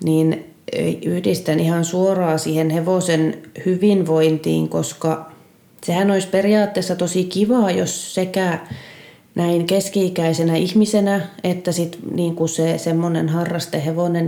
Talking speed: 100 wpm